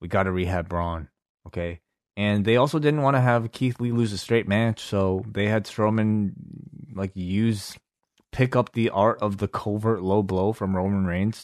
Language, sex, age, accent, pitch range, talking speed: English, male, 20-39, American, 95-115 Hz, 195 wpm